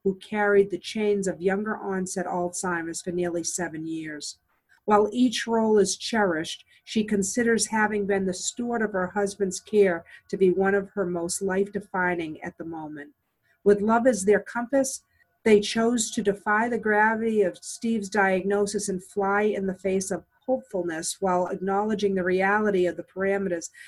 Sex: female